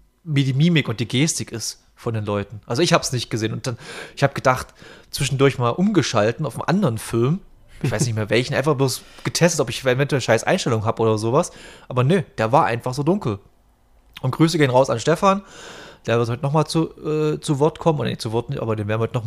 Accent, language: German, German